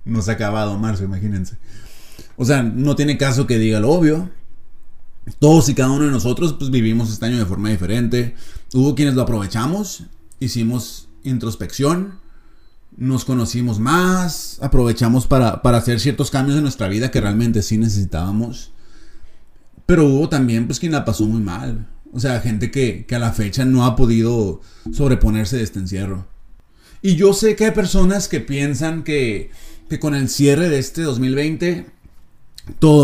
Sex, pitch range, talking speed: male, 110-145 Hz, 165 wpm